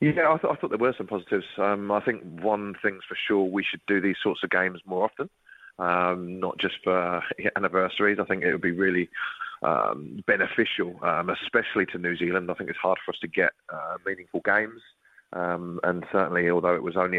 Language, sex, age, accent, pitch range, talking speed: English, male, 20-39, British, 90-95 Hz, 215 wpm